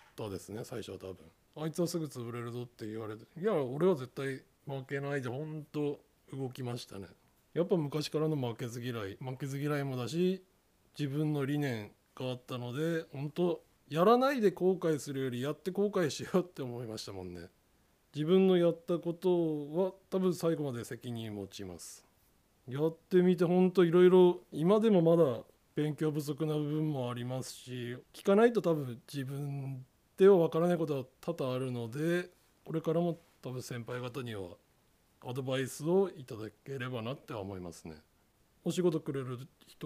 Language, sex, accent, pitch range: Japanese, male, native, 125-165 Hz